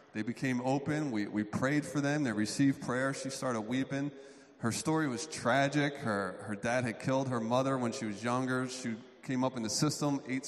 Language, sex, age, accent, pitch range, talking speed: English, male, 40-59, American, 120-140 Hz, 205 wpm